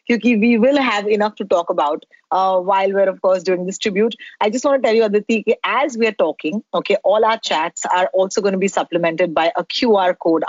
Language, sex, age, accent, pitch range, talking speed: Hindi, female, 30-49, native, 190-250 Hz, 245 wpm